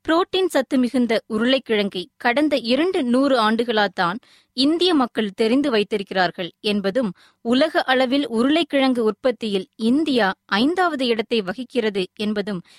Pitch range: 205-270 Hz